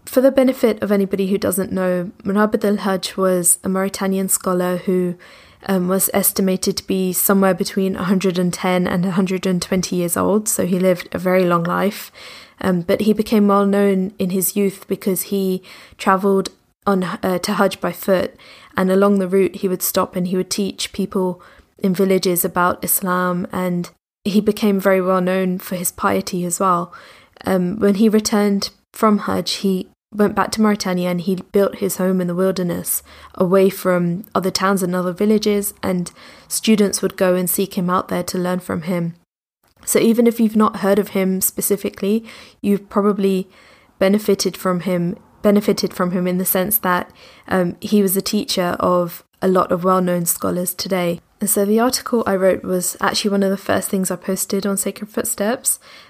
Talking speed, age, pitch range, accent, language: 180 wpm, 20-39, 185-200 Hz, British, English